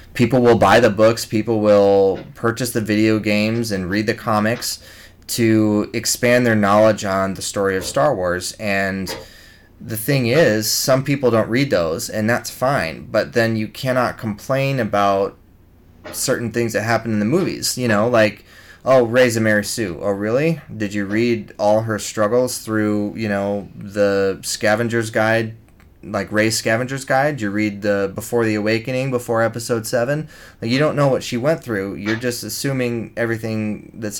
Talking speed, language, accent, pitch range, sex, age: 170 wpm, English, American, 105-120 Hz, male, 20-39